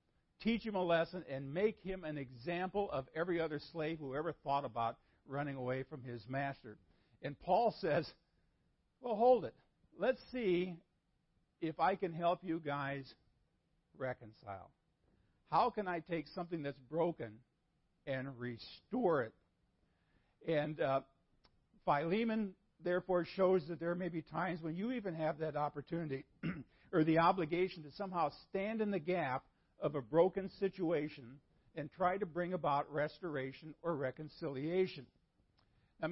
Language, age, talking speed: English, 50-69, 140 wpm